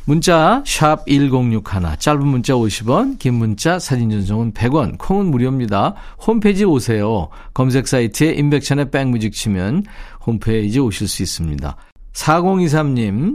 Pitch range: 110-160 Hz